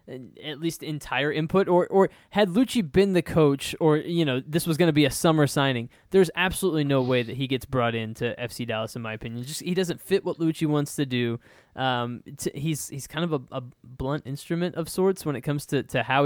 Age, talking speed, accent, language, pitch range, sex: 20-39, 235 wpm, American, English, 130-165 Hz, male